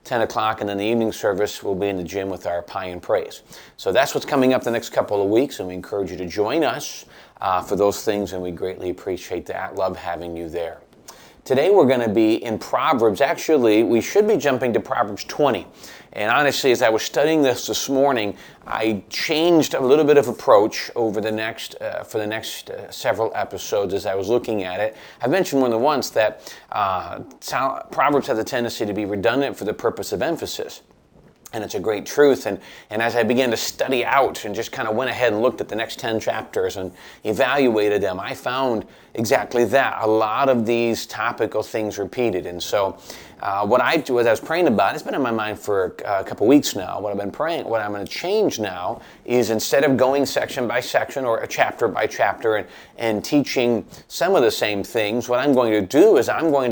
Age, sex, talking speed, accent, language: 40-59, male, 225 wpm, American, English